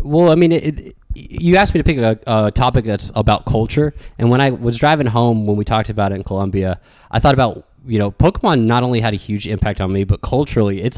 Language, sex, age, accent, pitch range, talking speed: English, male, 20-39, American, 100-130 Hz, 250 wpm